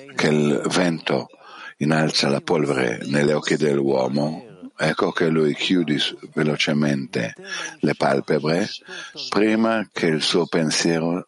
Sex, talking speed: male, 110 wpm